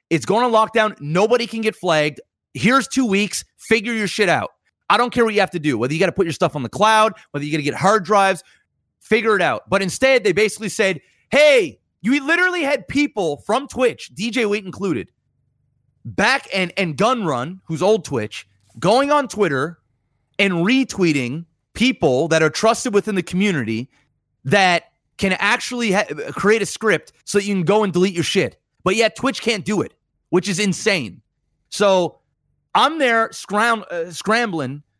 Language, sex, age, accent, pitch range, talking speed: English, male, 30-49, American, 155-215 Hz, 185 wpm